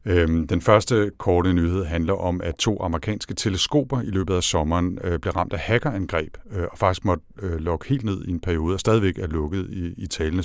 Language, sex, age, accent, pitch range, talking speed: Danish, male, 60-79, native, 85-105 Hz, 190 wpm